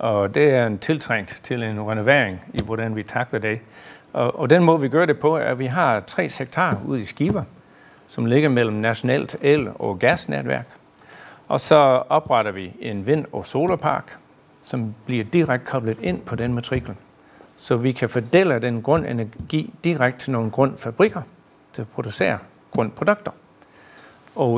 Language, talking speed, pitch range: Danish, 165 wpm, 110-150 Hz